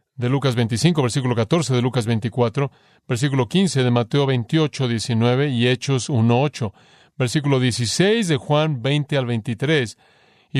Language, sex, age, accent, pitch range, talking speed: Spanish, male, 40-59, Mexican, 120-145 Hz, 145 wpm